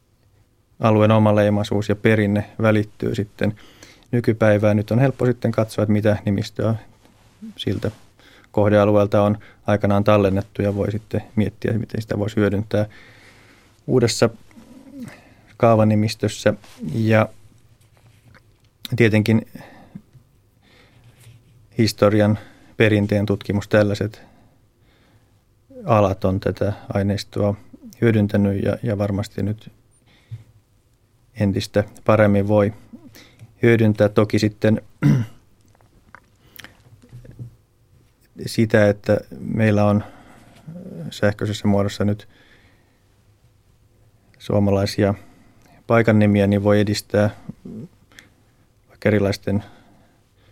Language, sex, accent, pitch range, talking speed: Finnish, male, native, 100-115 Hz, 75 wpm